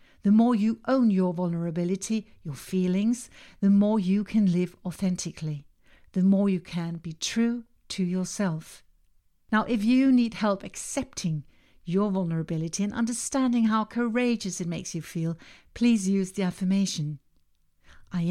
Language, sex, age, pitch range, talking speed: English, female, 60-79, 170-215 Hz, 140 wpm